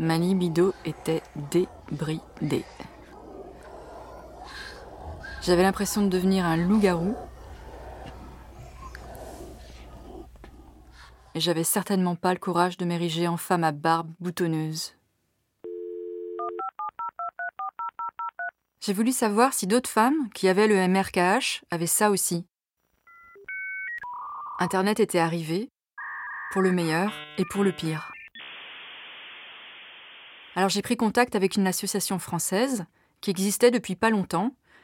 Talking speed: 100 wpm